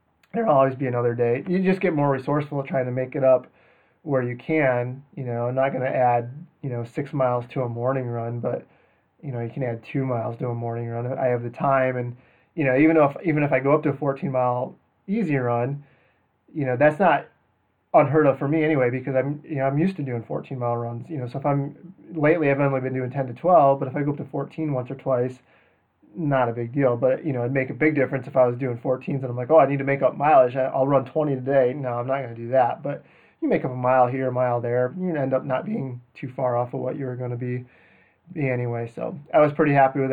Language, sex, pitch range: English, male, 125-150 Hz